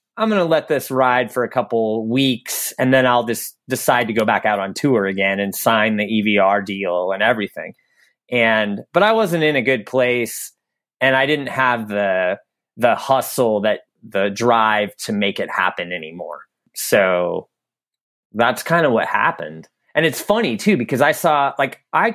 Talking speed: 180 wpm